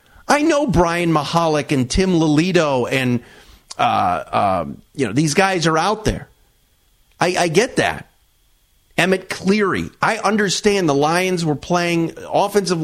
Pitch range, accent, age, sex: 135-180 Hz, American, 40-59, male